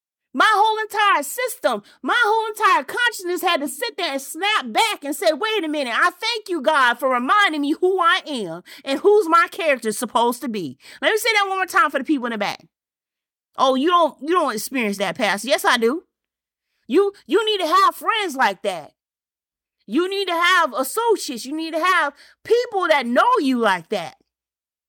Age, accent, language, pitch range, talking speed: 30-49, American, English, 255-400 Hz, 200 wpm